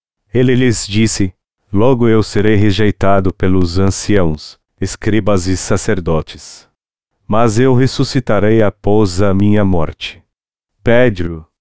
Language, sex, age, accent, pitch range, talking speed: Portuguese, male, 40-59, Brazilian, 95-110 Hz, 105 wpm